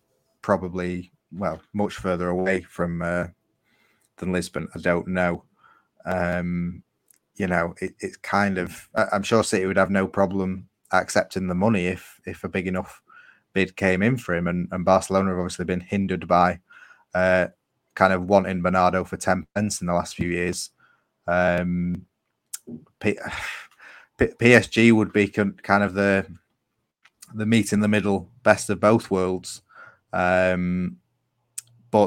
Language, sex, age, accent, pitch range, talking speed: English, male, 20-39, British, 90-105 Hz, 145 wpm